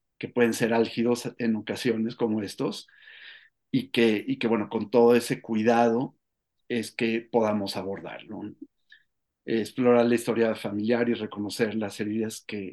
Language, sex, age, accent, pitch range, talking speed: Spanish, male, 50-69, Mexican, 110-130 Hz, 135 wpm